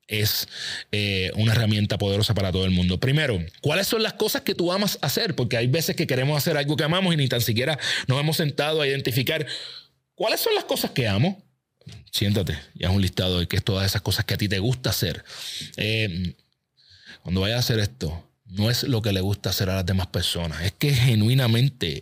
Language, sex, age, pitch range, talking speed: Spanish, male, 30-49, 105-155 Hz, 215 wpm